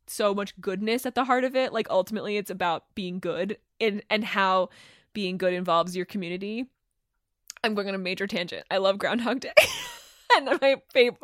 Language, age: English, 20-39